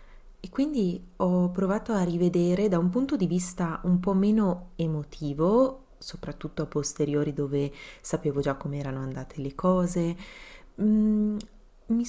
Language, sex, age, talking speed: Italian, female, 30-49, 130 wpm